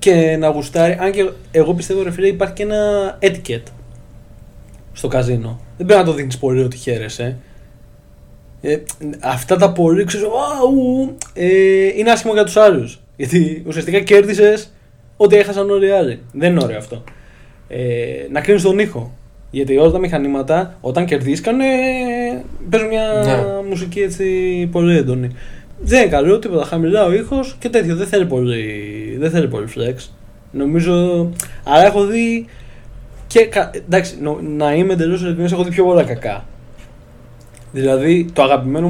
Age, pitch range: 20-39, 125-195 Hz